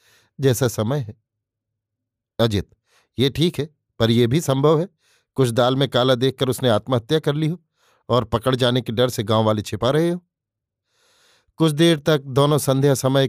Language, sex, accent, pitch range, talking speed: Hindi, male, native, 115-140 Hz, 175 wpm